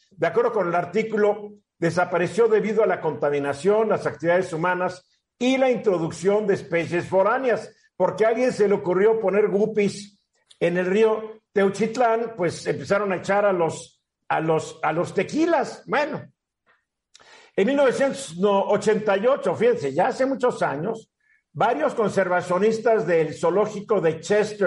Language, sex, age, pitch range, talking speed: Spanish, male, 50-69, 175-220 Hz, 135 wpm